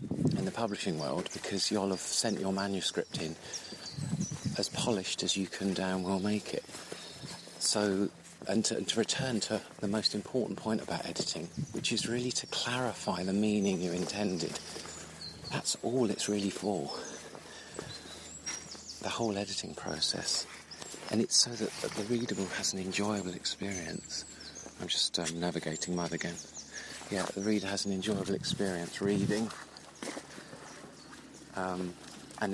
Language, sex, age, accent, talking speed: English, male, 40-59, British, 140 wpm